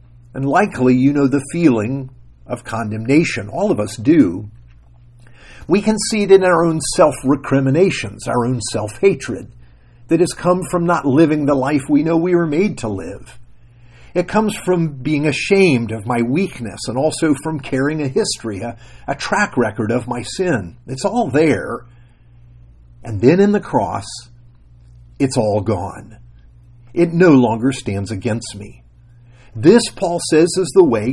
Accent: American